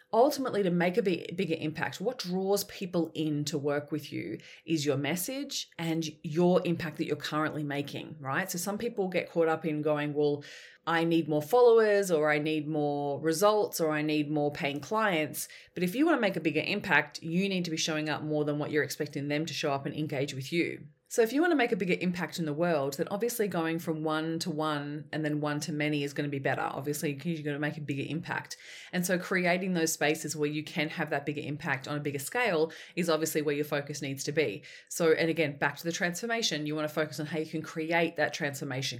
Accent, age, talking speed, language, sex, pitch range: Australian, 20-39, 240 wpm, English, female, 150-180 Hz